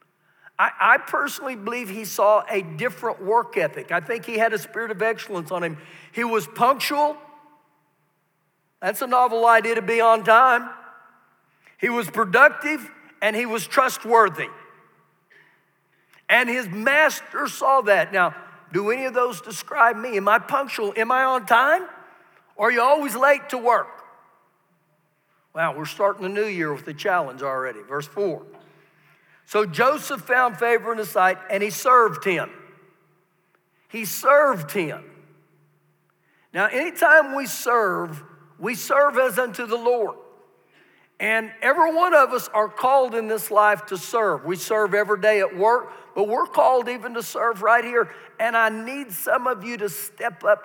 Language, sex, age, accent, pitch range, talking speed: English, male, 50-69, American, 185-250 Hz, 160 wpm